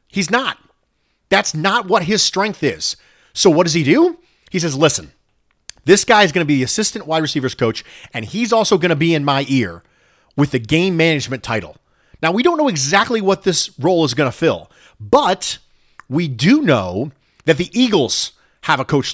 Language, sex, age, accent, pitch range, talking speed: English, male, 40-59, American, 140-205 Hz, 200 wpm